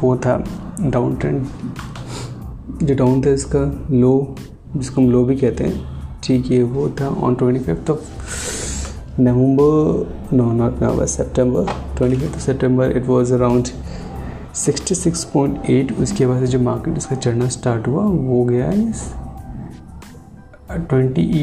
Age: 30-49